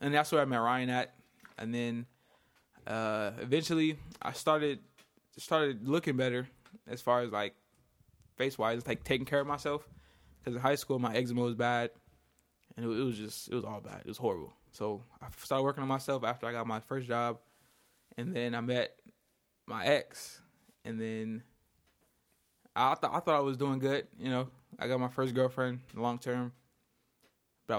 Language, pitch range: English, 115-135 Hz